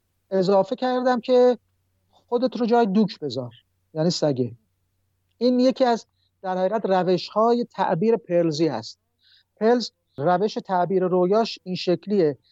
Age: 50-69